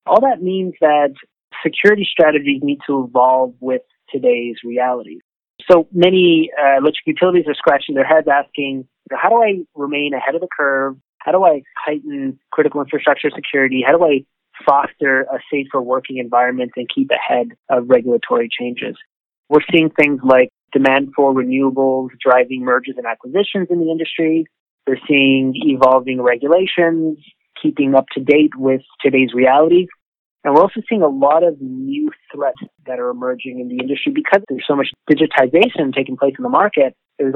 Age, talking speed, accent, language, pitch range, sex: 30-49, 165 wpm, American, English, 130-165 Hz, male